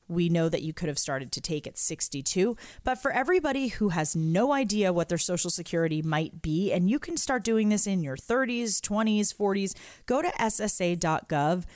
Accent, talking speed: American, 195 wpm